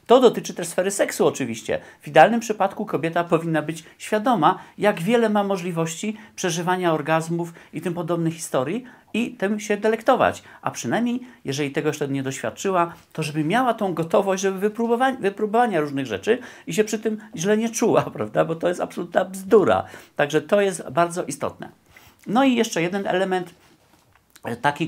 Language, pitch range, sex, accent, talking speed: Polish, 150-210 Hz, male, native, 160 wpm